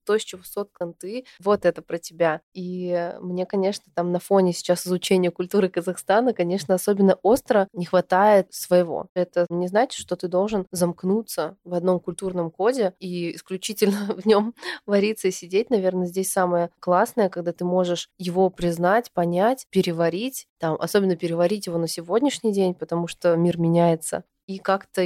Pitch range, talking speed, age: 170-190 Hz, 160 wpm, 20-39